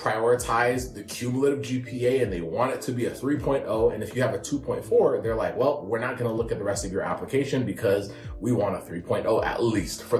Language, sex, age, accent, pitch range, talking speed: English, male, 30-49, American, 115-145 Hz, 235 wpm